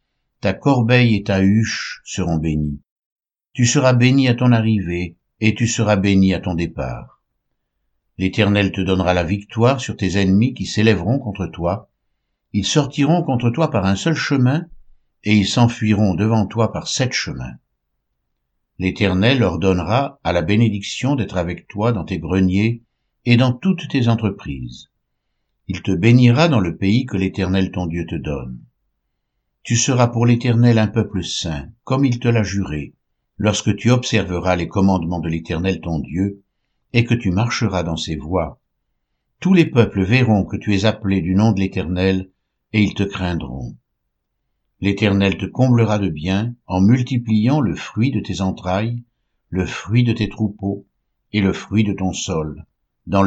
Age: 60-79